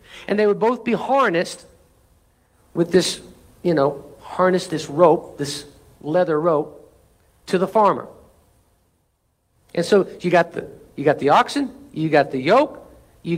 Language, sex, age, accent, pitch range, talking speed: English, male, 60-79, American, 125-185 Hz, 150 wpm